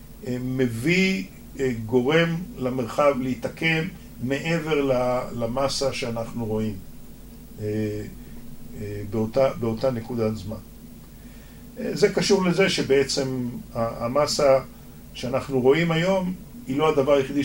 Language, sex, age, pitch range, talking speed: Hebrew, male, 50-69, 115-140 Hz, 85 wpm